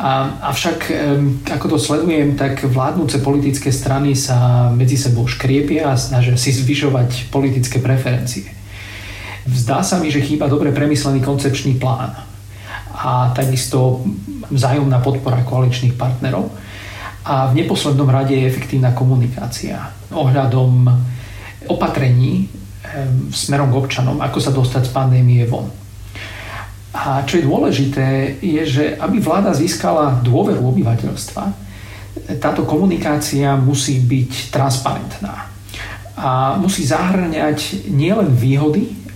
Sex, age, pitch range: male, 40-59, 120-145 Hz